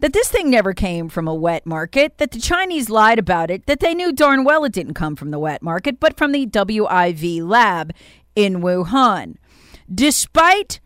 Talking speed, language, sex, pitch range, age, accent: 195 wpm, English, female, 180-285 Hz, 40-59, American